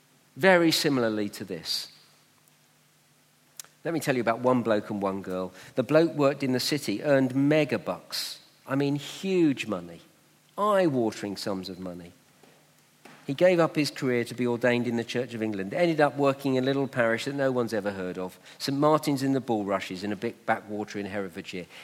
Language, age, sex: English, 50-69, male